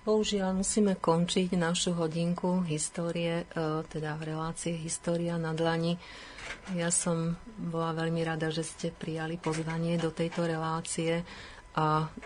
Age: 40-59